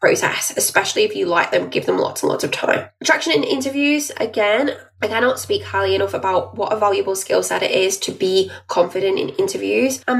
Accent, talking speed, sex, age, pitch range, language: British, 210 wpm, female, 10-29, 195-265 Hz, English